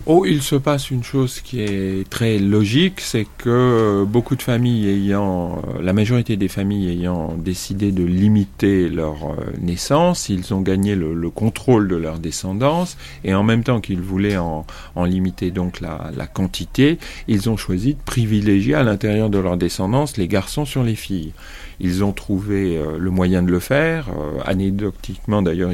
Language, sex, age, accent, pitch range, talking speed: French, male, 40-59, French, 90-115 Hz, 175 wpm